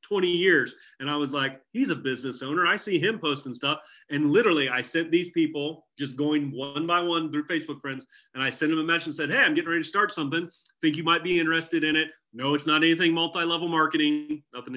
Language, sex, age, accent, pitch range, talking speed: English, male, 30-49, American, 135-165 Hz, 235 wpm